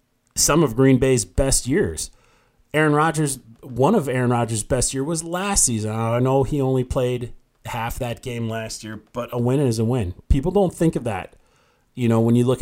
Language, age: English, 30-49